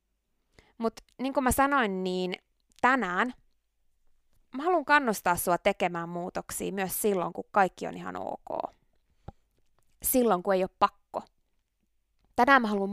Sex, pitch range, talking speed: female, 185-295 Hz, 130 wpm